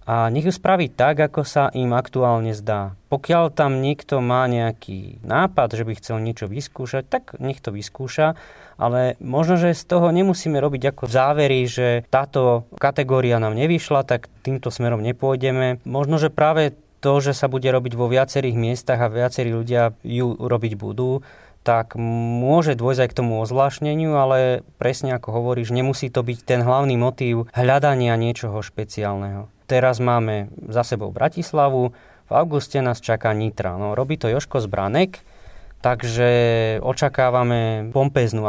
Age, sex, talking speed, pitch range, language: 20-39, male, 155 wpm, 115-140 Hz, Slovak